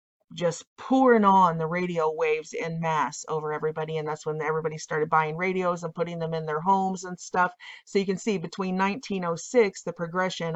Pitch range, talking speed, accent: 165-190 Hz, 190 wpm, American